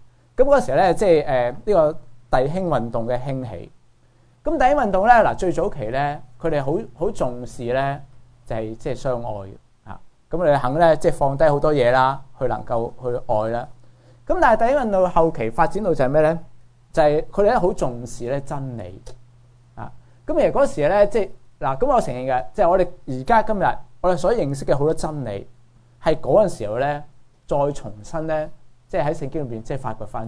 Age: 20-39